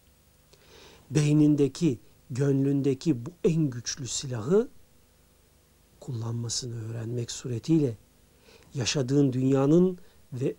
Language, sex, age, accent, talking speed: Turkish, male, 60-79, native, 70 wpm